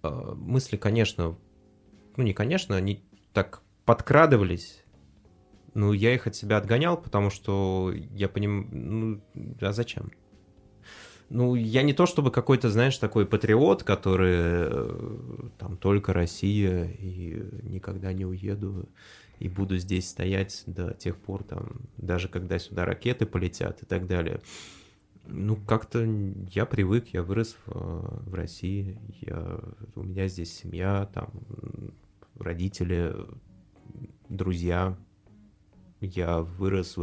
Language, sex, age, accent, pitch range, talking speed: Russian, male, 20-39, native, 95-110 Hz, 115 wpm